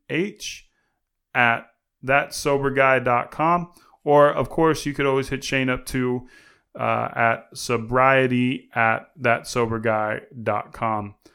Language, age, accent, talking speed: English, 20-39, American, 110 wpm